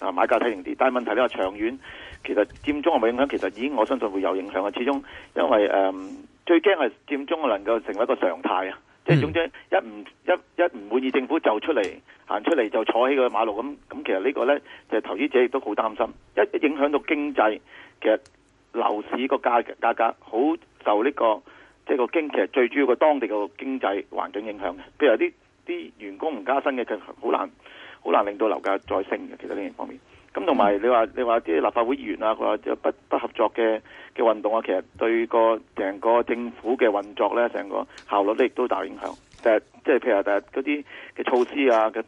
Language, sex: Chinese, male